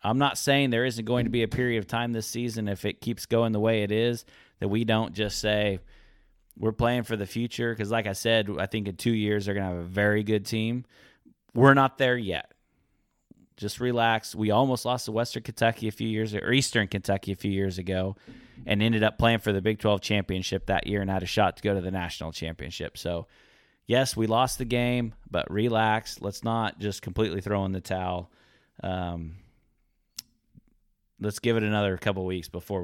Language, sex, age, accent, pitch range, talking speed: English, male, 30-49, American, 95-115 Hz, 210 wpm